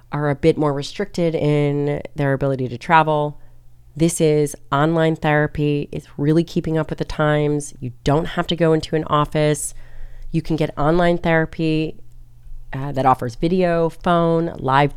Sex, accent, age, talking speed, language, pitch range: female, American, 30-49, 160 wpm, English, 130-160 Hz